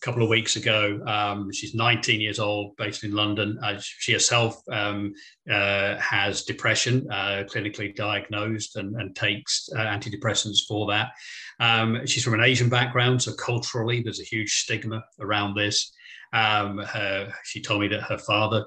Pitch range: 105-125 Hz